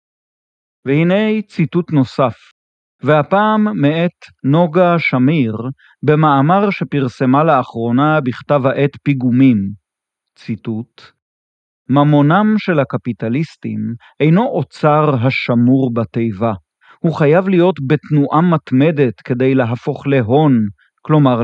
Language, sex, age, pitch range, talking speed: Hebrew, male, 40-59, 125-155 Hz, 85 wpm